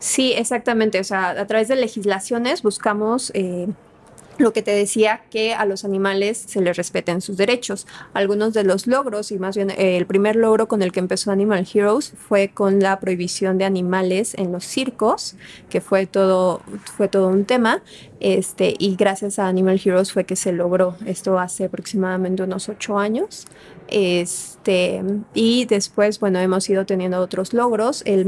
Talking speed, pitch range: 170 wpm, 185-215 Hz